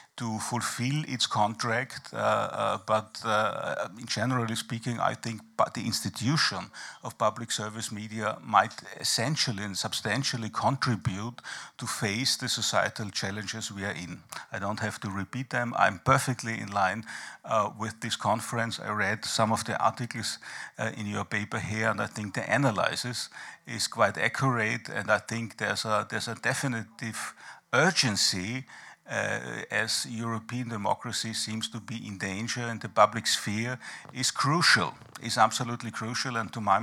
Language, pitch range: French, 105-125 Hz